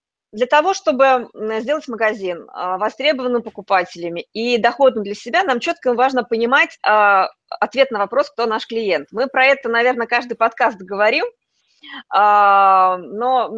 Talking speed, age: 130 wpm, 20-39